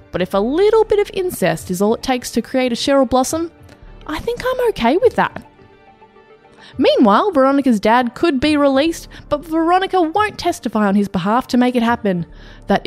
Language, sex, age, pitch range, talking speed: English, female, 20-39, 200-280 Hz, 185 wpm